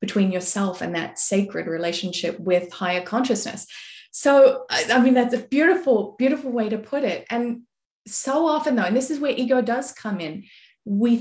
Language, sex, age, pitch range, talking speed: English, female, 20-39, 185-240 Hz, 175 wpm